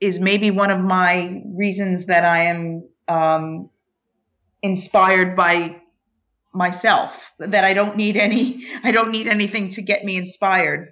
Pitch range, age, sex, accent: 160-195 Hz, 30-49, female, American